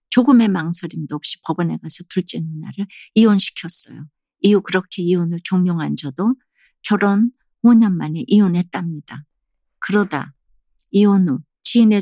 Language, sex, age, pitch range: Korean, female, 50-69, 165-205 Hz